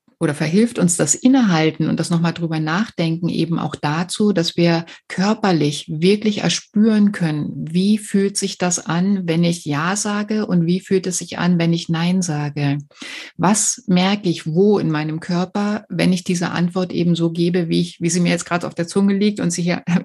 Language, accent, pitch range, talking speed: German, German, 165-195 Hz, 200 wpm